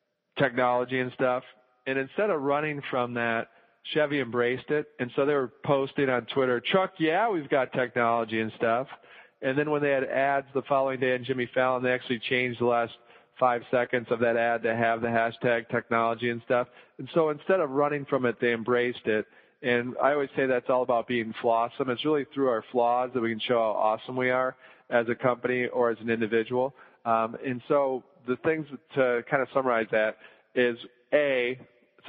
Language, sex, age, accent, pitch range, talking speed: English, male, 40-59, American, 115-135 Hz, 200 wpm